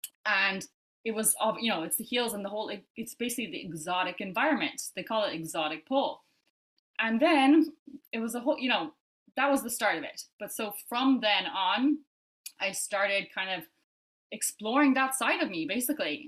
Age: 20-39